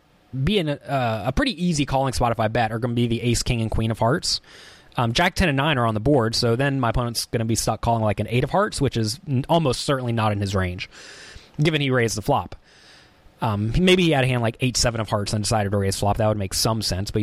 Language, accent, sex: English, American, male